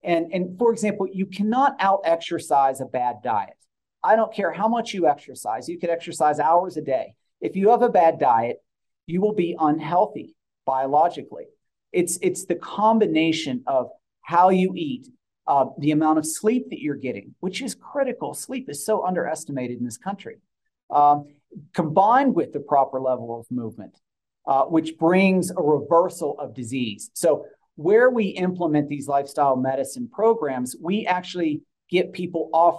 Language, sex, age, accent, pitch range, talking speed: English, male, 40-59, American, 140-200 Hz, 160 wpm